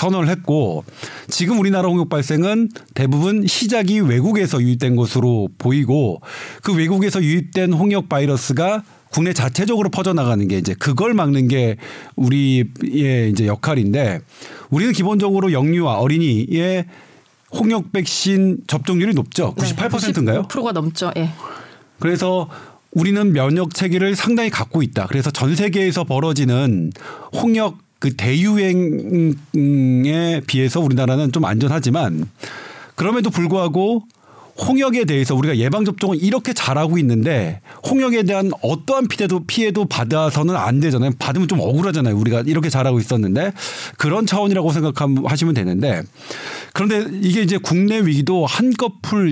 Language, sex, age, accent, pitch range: Korean, male, 40-59, native, 135-195 Hz